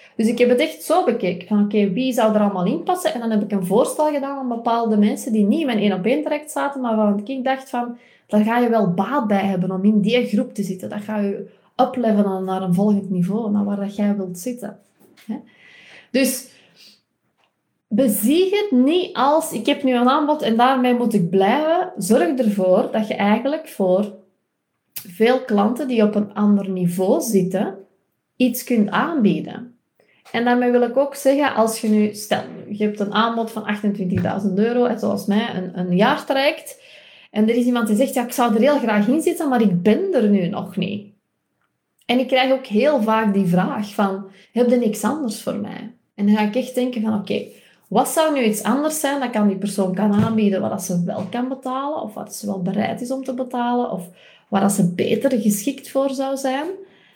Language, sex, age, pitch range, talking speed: Dutch, female, 20-39, 205-255 Hz, 210 wpm